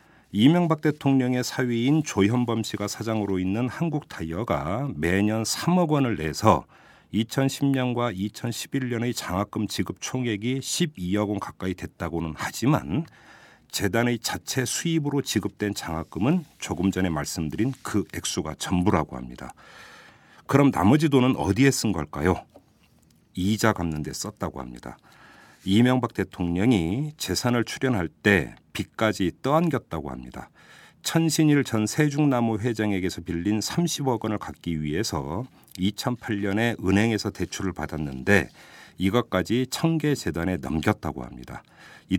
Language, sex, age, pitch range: Korean, male, 50-69, 90-130 Hz